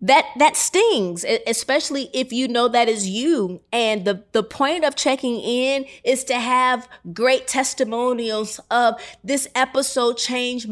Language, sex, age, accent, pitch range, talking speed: English, female, 30-49, American, 200-245 Hz, 145 wpm